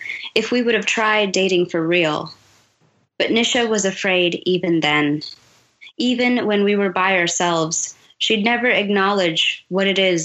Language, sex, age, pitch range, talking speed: English, female, 20-39, 165-205 Hz, 150 wpm